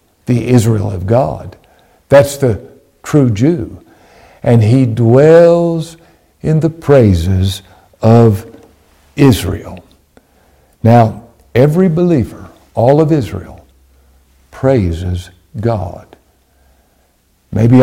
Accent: American